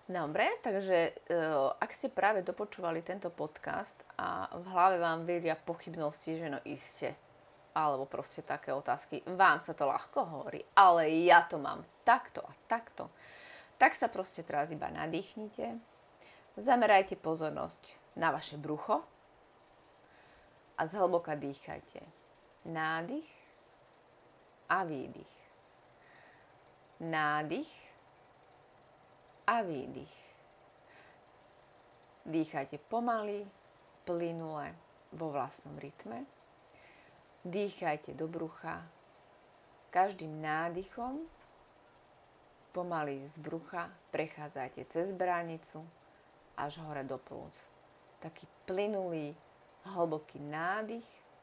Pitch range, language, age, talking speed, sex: 155-185 Hz, Slovak, 30-49, 90 wpm, female